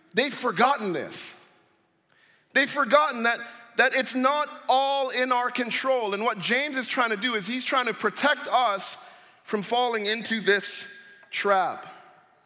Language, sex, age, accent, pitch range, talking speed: English, male, 40-59, American, 220-280 Hz, 150 wpm